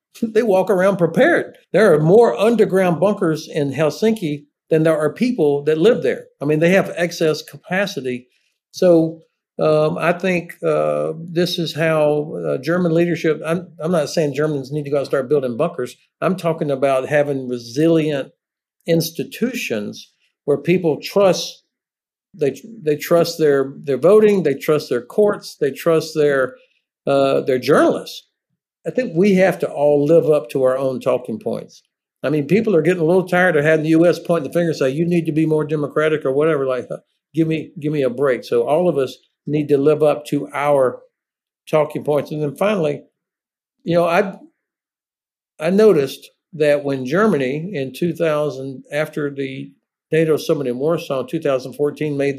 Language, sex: English, male